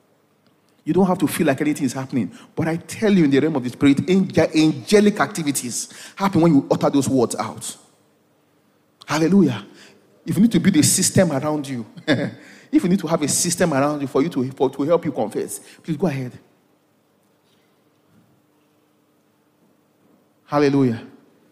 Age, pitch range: 40-59, 135-185 Hz